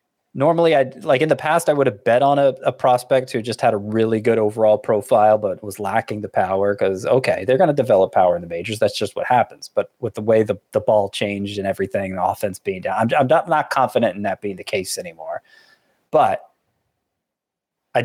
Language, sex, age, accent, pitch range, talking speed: English, male, 30-49, American, 105-140 Hz, 225 wpm